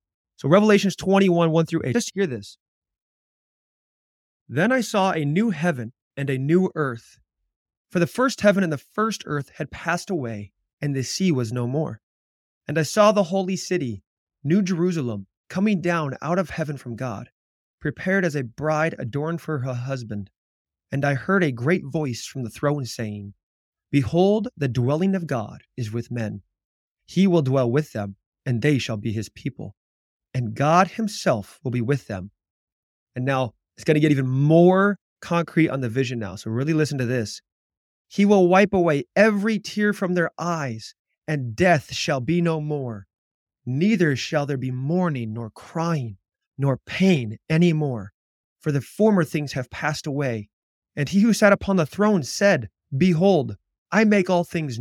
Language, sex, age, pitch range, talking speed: English, male, 30-49, 115-175 Hz, 170 wpm